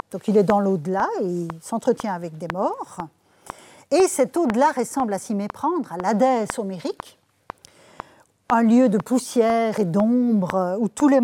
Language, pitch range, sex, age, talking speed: French, 205-265 Hz, female, 50-69, 160 wpm